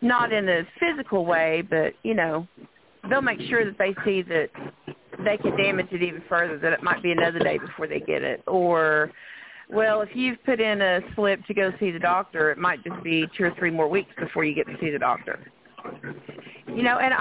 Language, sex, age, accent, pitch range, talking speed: English, female, 40-59, American, 185-240 Hz, 220 wpm